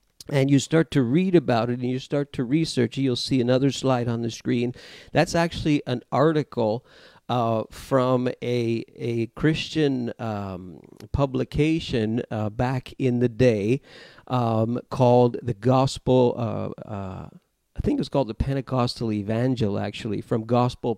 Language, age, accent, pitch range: English, 50-69, American, 115-140 Hz